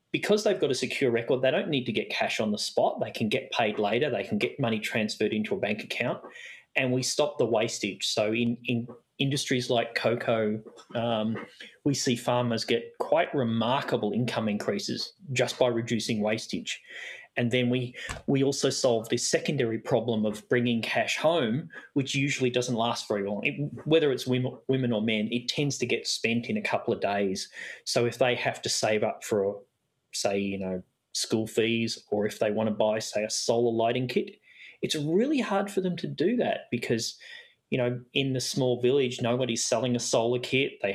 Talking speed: 200 wpm